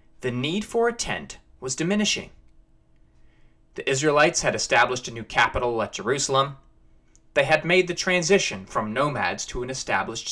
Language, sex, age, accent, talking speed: English, male, 30-49, American, 150 wpm